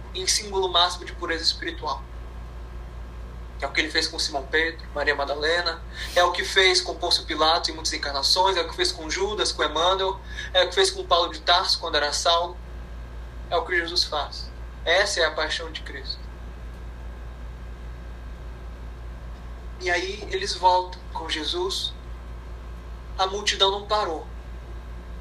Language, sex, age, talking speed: Portuguese, male, 20-39, 155 wpm